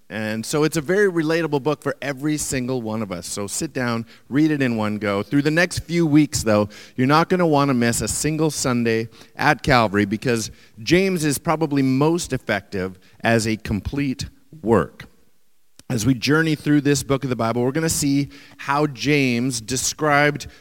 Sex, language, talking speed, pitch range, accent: male, English, 190 wpm, 115-145 Hz, American